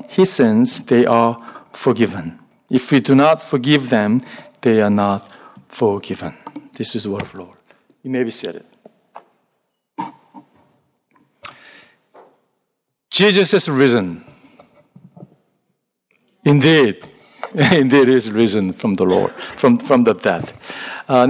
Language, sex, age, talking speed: English, male, 50-69, 115 wpm